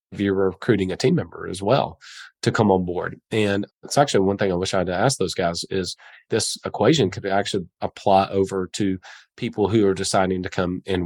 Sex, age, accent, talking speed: male, 30-49, American, 215 wpm